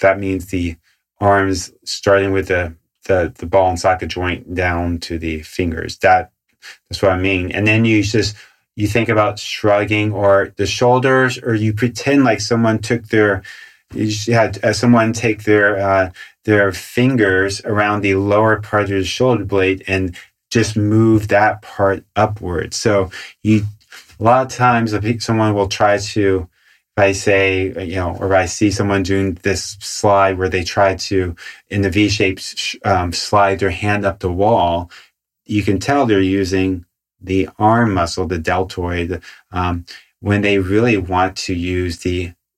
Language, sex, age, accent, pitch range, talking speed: English, male, 30-49, American, 90-105 Hz, 160 wpm